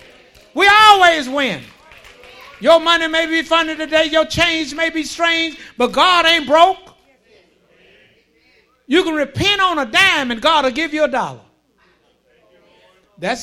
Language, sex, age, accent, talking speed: English, male, 60-79, American, 145 wpm